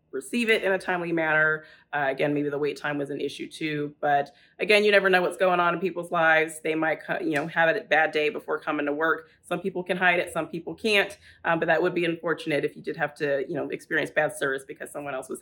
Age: 30-49